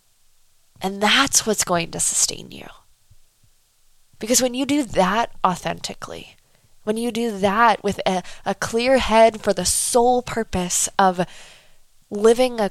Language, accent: English, American